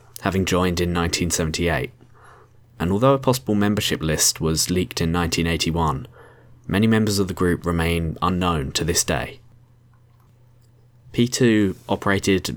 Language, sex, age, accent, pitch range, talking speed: English, male, 20-39, British, 85-115 Hz, 125 wpm